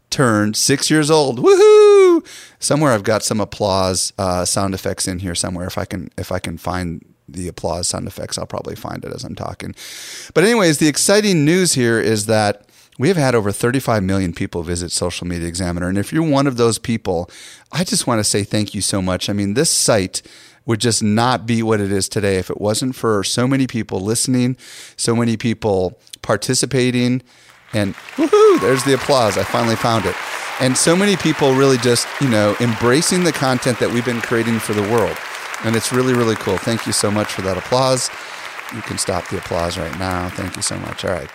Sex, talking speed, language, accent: male, 210 wpm, English, American